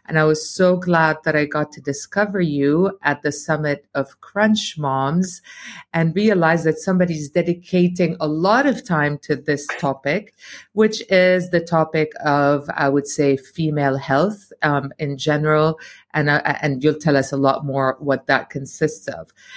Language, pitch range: English, 150-185 Hz